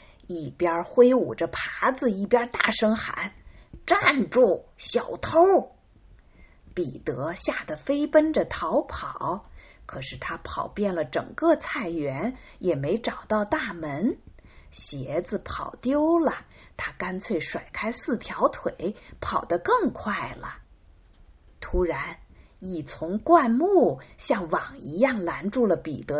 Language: Chinese